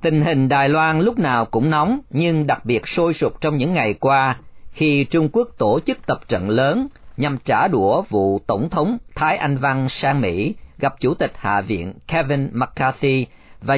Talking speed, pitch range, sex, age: 190 wpm, 115-165 Hz, male, 40-59